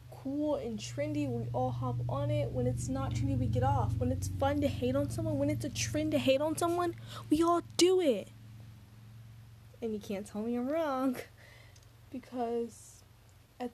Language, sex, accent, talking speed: English, female, American, 190 wpm